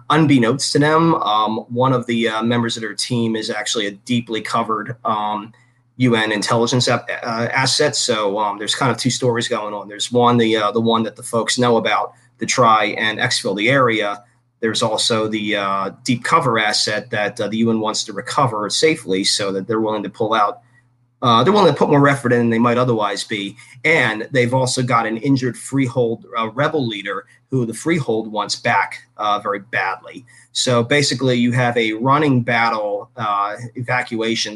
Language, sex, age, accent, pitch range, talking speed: English, male, 30-49, American, 110-125 Hz, 195 wpm